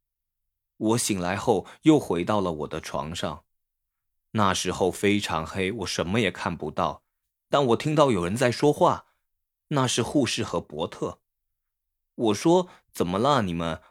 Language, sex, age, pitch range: Chinese, male, 20-39, 90-130 Hz